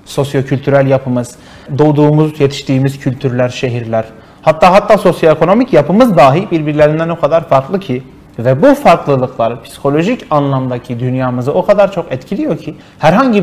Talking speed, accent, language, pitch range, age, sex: 125 wpm, native, Turkish, 135-185 Hz, 30-49, male